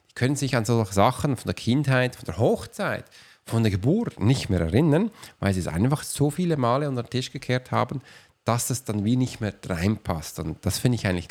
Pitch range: 105-140 Hz